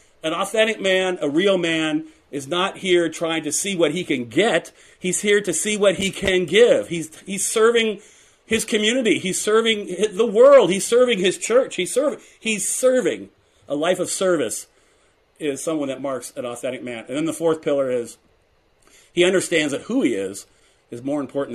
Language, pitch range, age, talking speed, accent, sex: English, 160-215 Hz, 40-59, 185 wpm, American, male